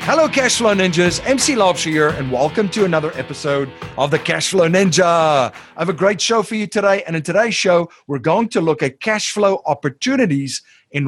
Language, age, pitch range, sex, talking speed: English, 30-49, 135-180 Hz, male, 190 wpm